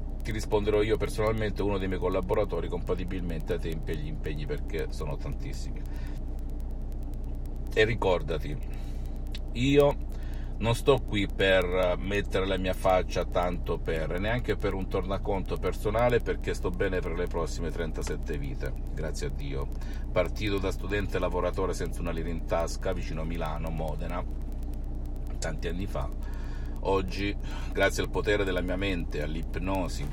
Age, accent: 50-69, native